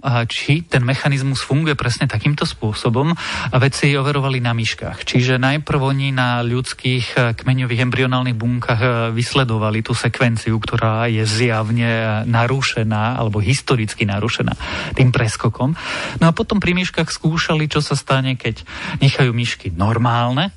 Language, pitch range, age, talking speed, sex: Slovak, 115-135 Hz, 30-49, 130 wpm, male